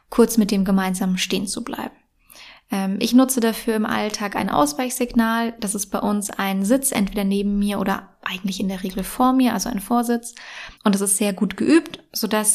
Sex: female